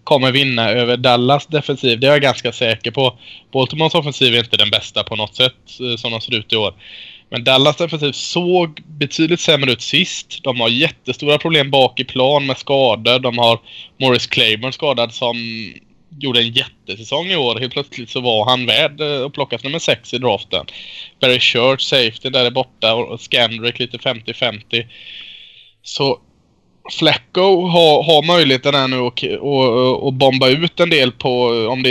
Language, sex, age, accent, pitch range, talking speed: Swedish, male, 20-39, Norwegian, 120-140 Hz, 175 wpm